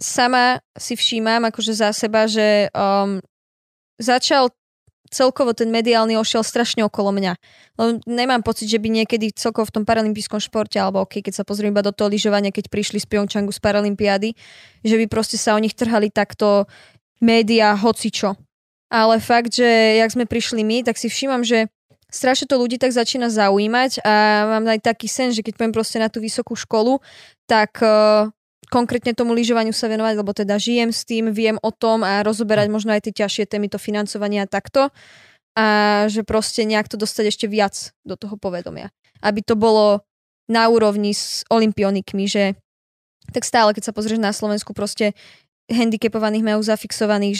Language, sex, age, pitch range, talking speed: Slovak, female, 20-39, 210-230 Hz, 175 wpm